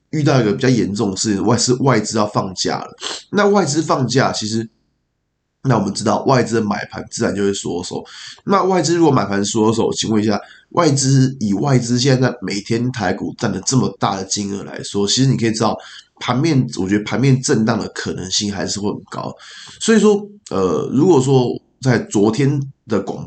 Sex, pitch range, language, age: male, 105-130 Hz, Chinese, 20-39